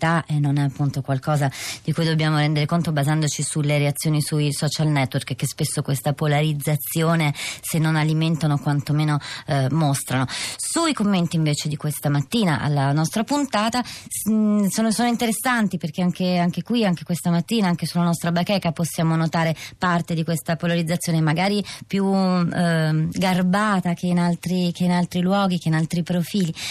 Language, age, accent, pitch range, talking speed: Italian, 30-49, native, 155-180 Hz, 160 wpm